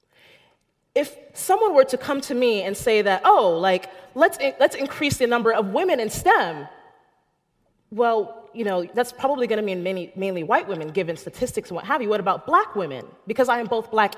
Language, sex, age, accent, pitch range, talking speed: English, female, 30-49, American, 195-280 Hz, 205 wpm